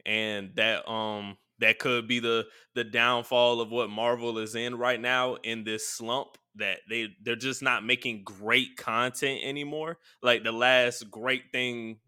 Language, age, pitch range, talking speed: English, 20-39, 115-145 Hz, 165 wpm